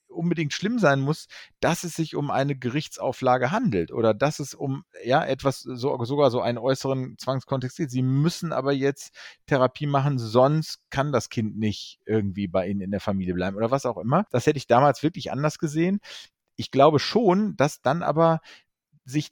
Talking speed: 185 wpm